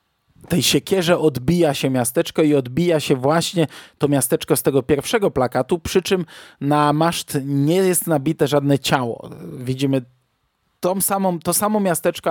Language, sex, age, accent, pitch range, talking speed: Polish, male, 20-39, native, 130-160 Hz, 145 wpm